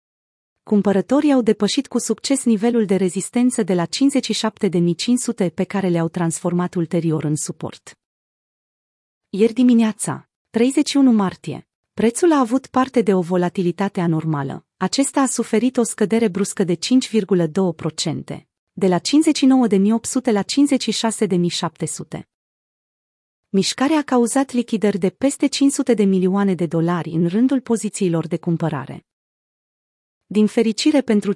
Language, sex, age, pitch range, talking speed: Romanian, female, 30-49, 180-240 Hz, 120 wpm